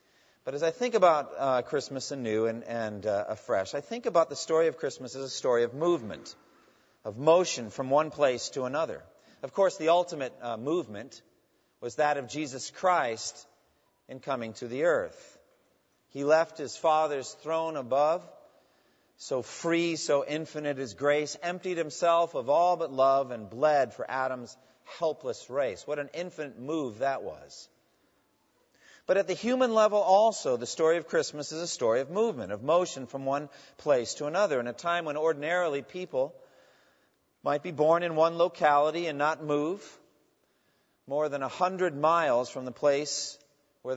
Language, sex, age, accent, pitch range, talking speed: English, male, 40-59, American, 135-175 Hz, 170 wpm